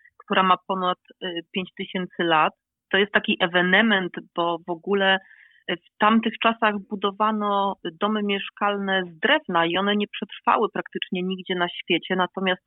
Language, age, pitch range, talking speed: Polish, 30-49, 175-205 Hz, 135 wpm